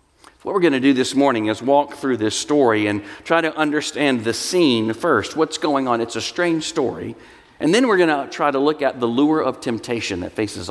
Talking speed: 230 wpm